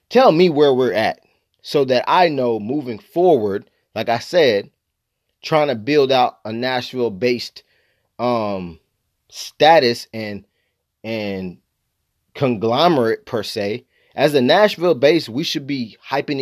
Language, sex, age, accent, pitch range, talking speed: English, male, 30-49, American, 110-145 Hz, 130 wpm